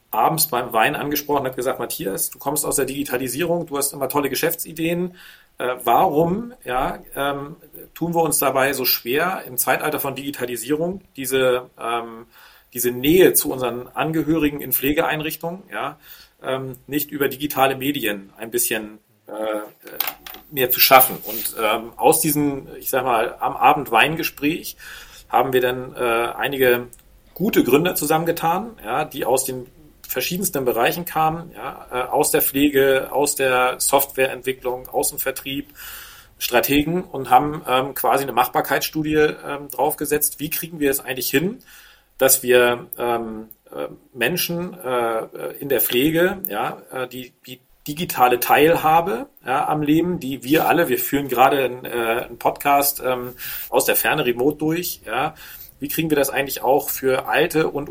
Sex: male